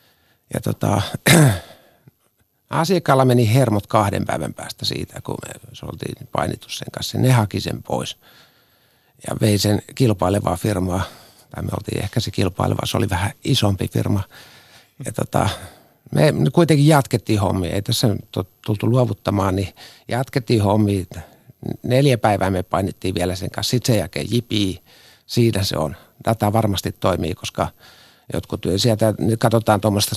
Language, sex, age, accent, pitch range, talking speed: Finnish, male, 50-69, native, 95-125 Hz, 140 wpm